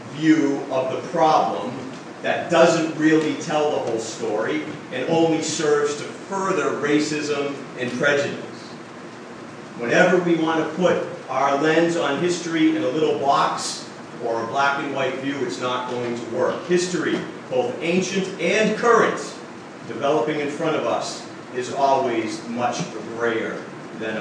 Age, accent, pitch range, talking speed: 40-59, American, 145-175 Hz, 145 wpm